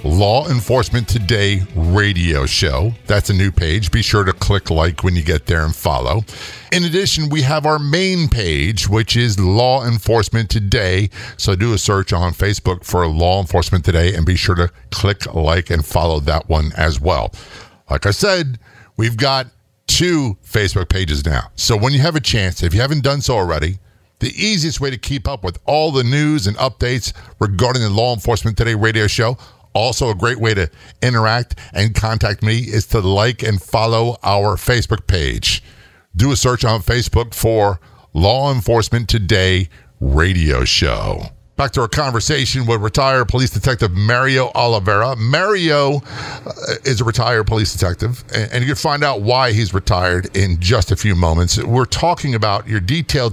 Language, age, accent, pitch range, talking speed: English, 50-69, American, 95-125 Hz, 175 wpm